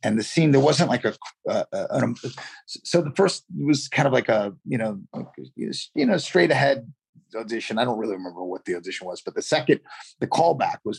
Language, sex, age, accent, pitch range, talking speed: English, male, 30-49, American, 105-140 Hz, 220 wpm